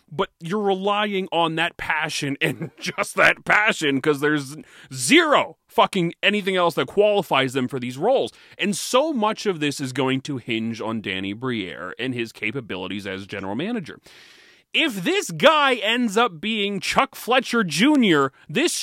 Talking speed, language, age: 160 wpm, English, 30-49